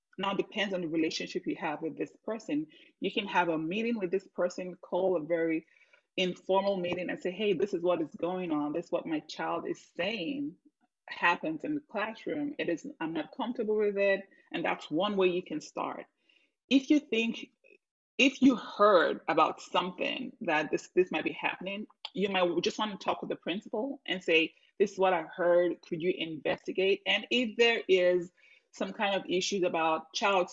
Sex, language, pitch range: female, English, 170-250 Hz